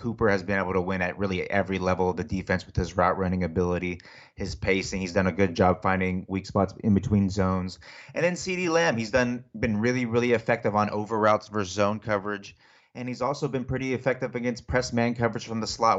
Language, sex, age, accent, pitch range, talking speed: English, male, 30-49, American, 95-110 Hz, 225 wpm